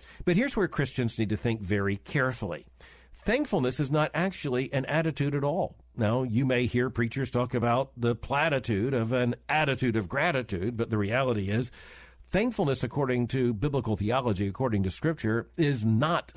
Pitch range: 120-160 Hz